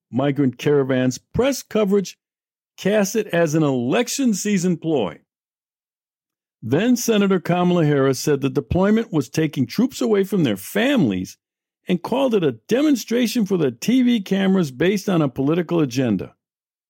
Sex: male